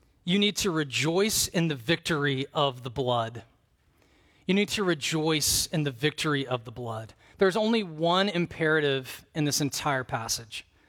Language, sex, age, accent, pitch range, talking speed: English, male, 40-59, American, 115-175 Hz, 155 wpm